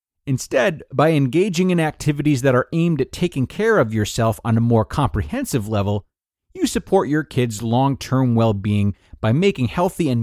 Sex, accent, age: male, American, 30-49